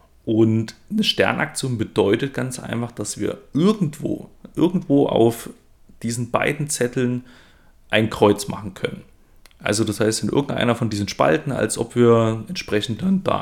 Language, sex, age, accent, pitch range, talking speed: German, male, 30-49, German, 110-130 Hz, 145 wpm